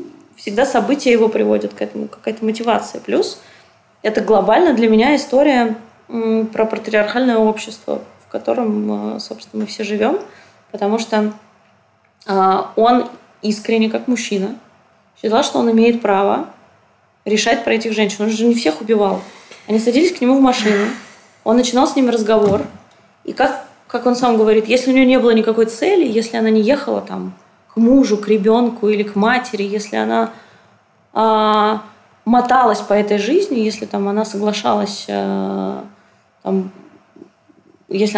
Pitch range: 205-245 Hz